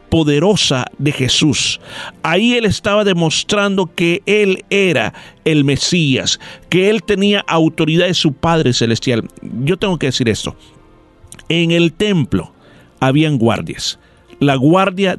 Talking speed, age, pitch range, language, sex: 125 wpm, 50-69, 130-180 Hz, Spanish, male